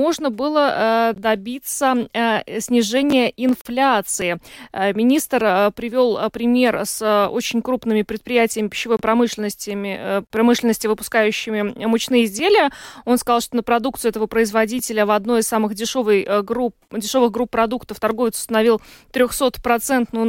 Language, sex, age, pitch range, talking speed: Russian, female, 20-39, 220-265 Hz, 105 wpm